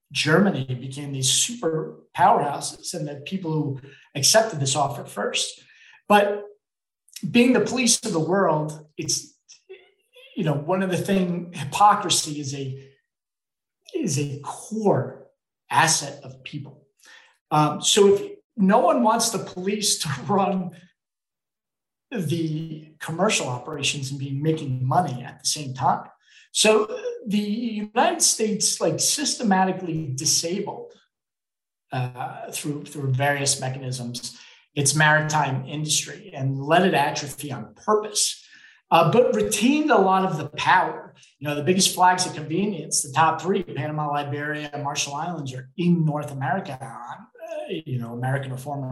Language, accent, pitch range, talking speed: English, American, 135-195 Hz, 135 wpm